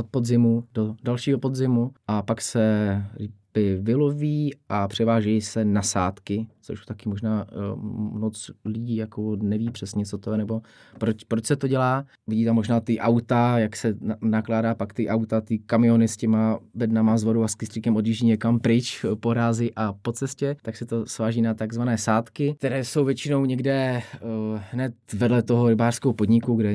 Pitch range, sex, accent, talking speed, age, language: 105-115 Hz, male, native, 175 wpm, 20-39, Czech